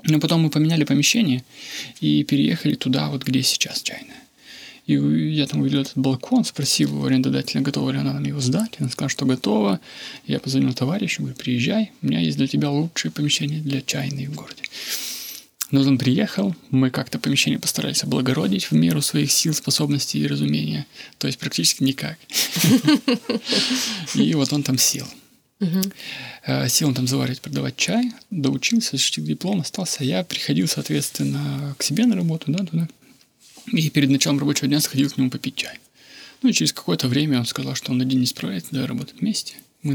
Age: 20-39